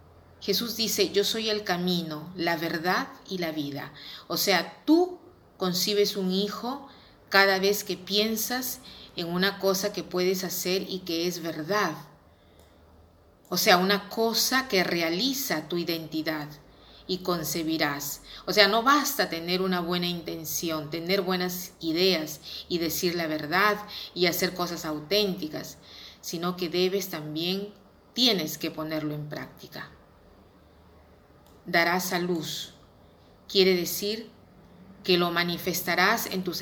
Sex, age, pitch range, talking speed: female, 40-59, 160-195 Hz, 130 wpm